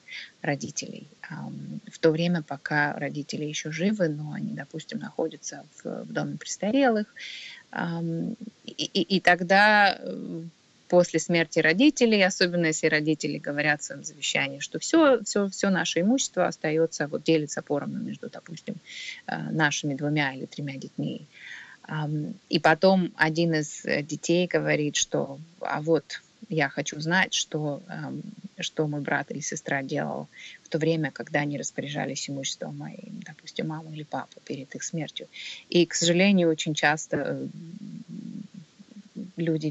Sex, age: female, 30-49